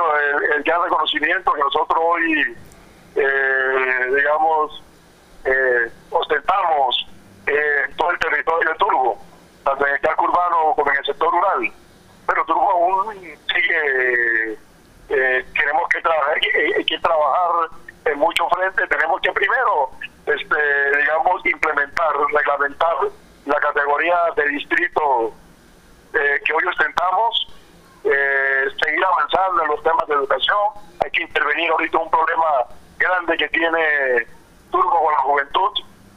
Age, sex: 40-59, male